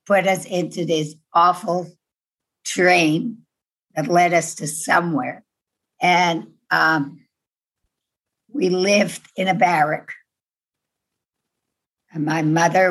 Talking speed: 100 wpm